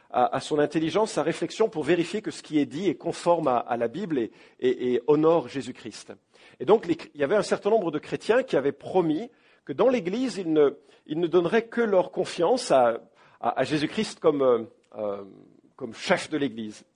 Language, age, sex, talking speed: English, 50-69, male, 205 wpm